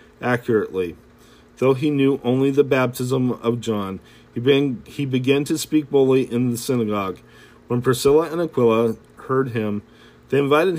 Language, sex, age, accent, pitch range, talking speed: English, male, 40-59, American, 105-130 Hz, 140 wpm